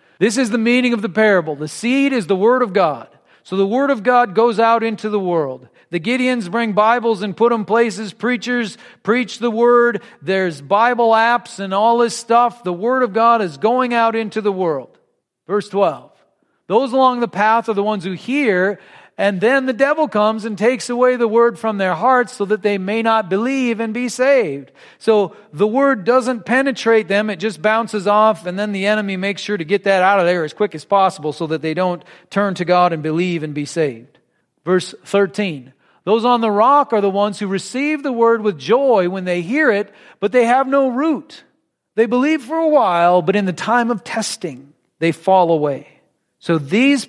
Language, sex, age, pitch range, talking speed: English, male, 40-59, 190-240 Hz, 210 wpm